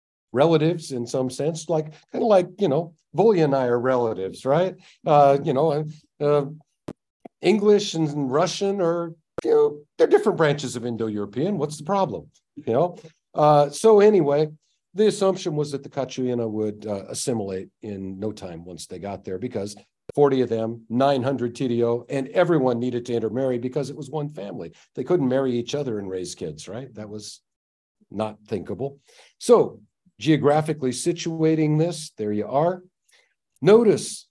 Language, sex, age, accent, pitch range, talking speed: English, male, 50-69, American, 120-170 Hz, 165 wpm